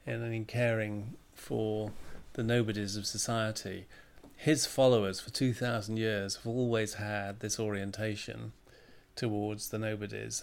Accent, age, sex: British, 40-59, male